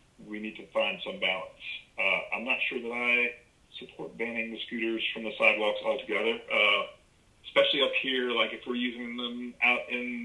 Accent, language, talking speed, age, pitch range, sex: American, English, 180 wpm, 40-59, 110-125 Hz, male